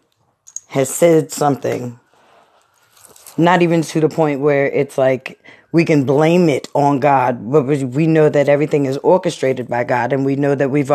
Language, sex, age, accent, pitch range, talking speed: English, female, 20-39, American, 140-175 Hz, 170 wpm